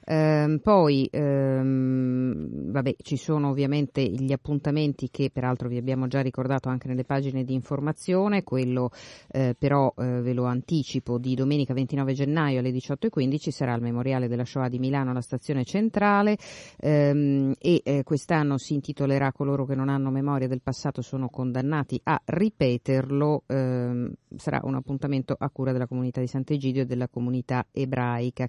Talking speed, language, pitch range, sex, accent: 155 wpm, Italian, 130-145 Hz, female, native